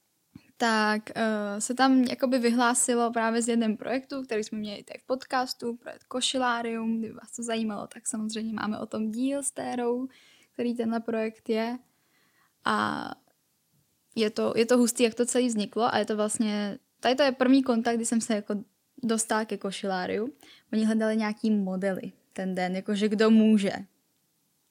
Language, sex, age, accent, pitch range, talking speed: Czech, female, 10-29, native, 215-250 Hz, 165 wpm